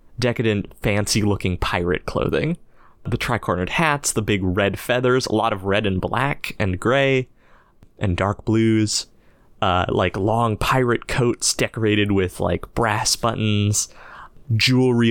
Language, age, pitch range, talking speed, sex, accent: English, 20-39, 95-115 Hz, 135 wpm, male, American